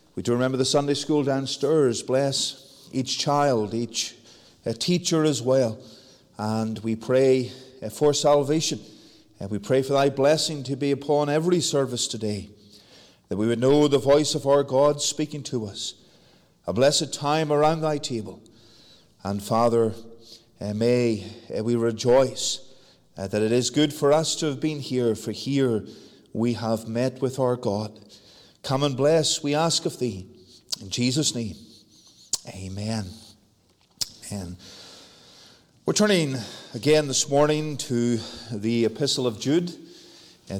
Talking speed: 140 wpm